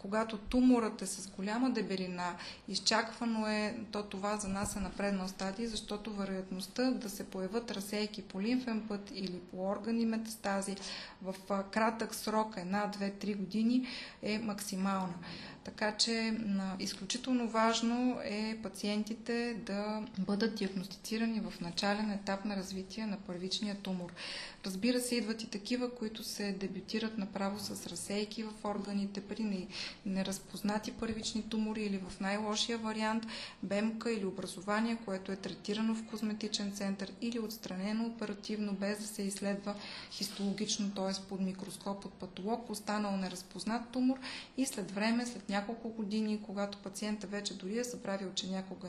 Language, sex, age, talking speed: Bulgarian, female, 20-39, 140 wpm